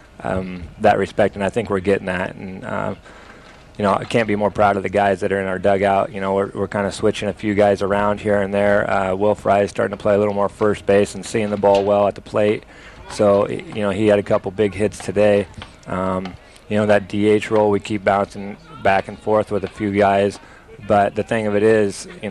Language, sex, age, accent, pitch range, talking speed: English, male, 20-39, American, 100-115 Hz, 245 wpm